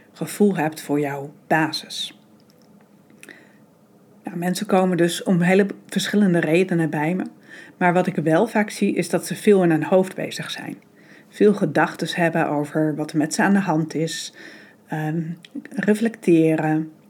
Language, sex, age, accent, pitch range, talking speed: Dutch, female, 40-59, Dutch, 160-190 Hz, 145 wpm